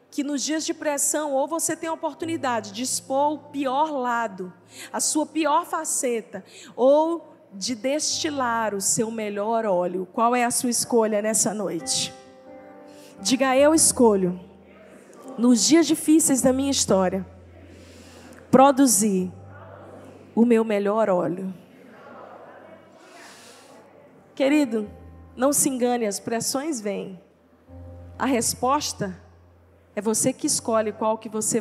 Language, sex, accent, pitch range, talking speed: Portuguese, female, Brazilian, 210-330 Hz, 120 wpm